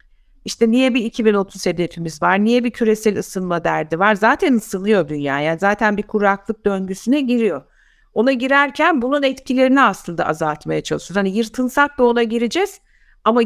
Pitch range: 180-245 Hz